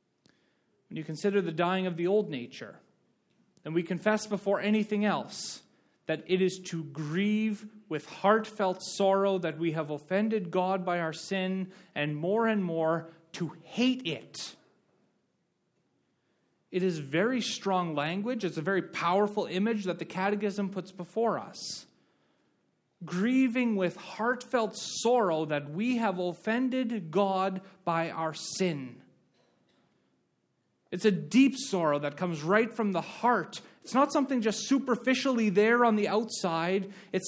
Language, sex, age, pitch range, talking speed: English, male, 30-49, 165-215 Hz, 140 wpm